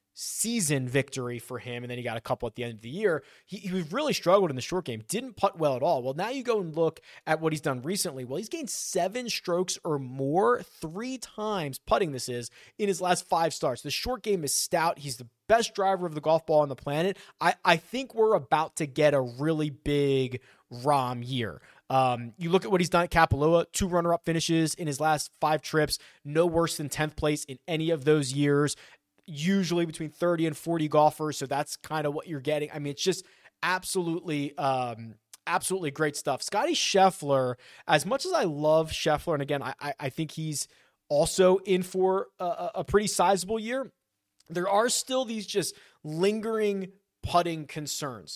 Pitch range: 140-185 Hz